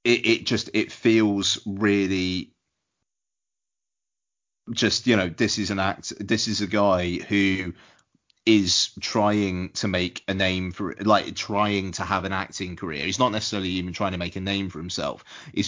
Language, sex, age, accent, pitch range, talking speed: English, male, 30-49, British, 95-105 Hz, 170 wpm